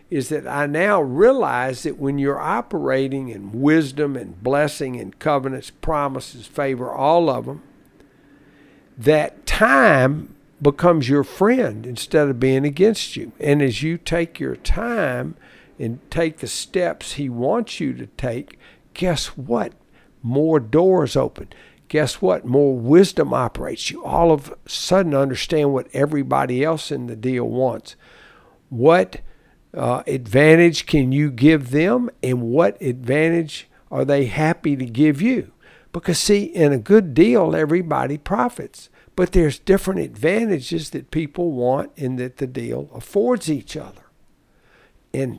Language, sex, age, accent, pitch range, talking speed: English, male, 60-79, American, 130-170 Hz, 140 wpm